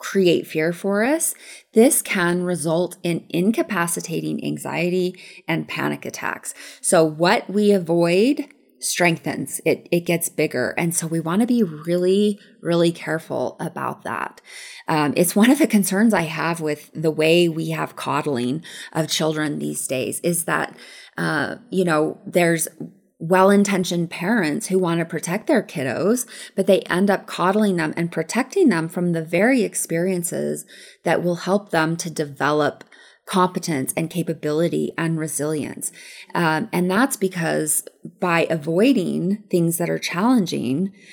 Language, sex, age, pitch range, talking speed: English, female, 20-39, 160-205 Hz, 145 wpm